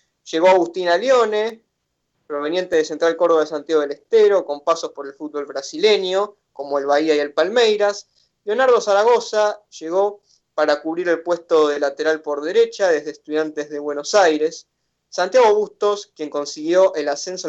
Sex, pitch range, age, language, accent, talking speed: male, 150-205 Hz, 20-39, Spanish, Argentinian, 155 wpm